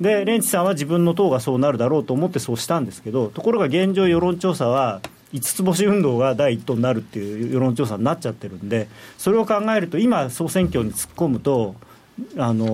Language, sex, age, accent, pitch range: Japanese, male, 40-59, native, 115-170 Hz